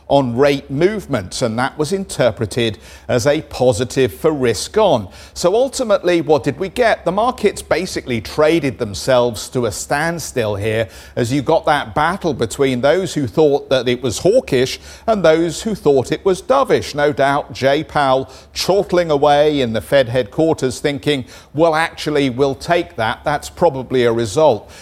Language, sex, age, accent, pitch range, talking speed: English, male, 50-69, British, 125-165 Hz, 165 wpm